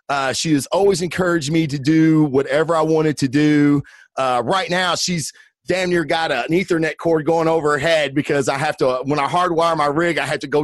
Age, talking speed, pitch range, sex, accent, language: 30-49, 235 wpm, 145-180 Hz, male, American, English